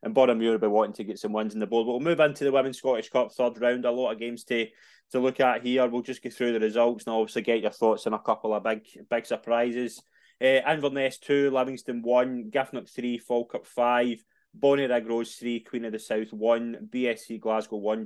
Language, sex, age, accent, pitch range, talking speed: English, male, 20-39, British, 110-125 Hz, 240 wpm